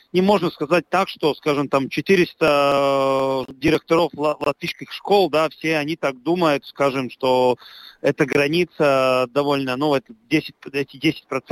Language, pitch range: Russian, 145-175 Hz